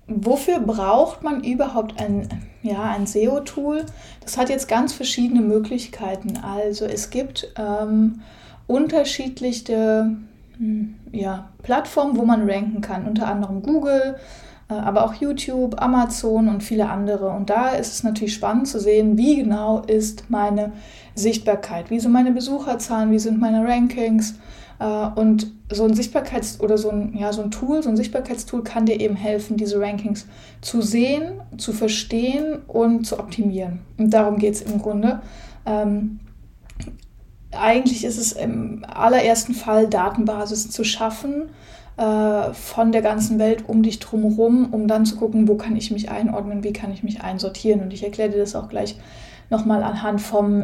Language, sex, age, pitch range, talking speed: German, female, 20-39, 210-235 Hz, 155 wpm